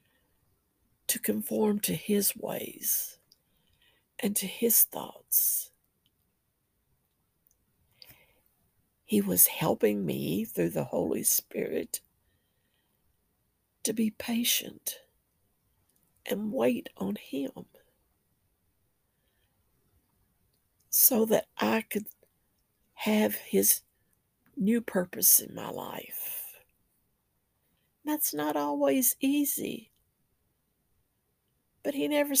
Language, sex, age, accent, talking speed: English, female, 60-79, American, 80 wpm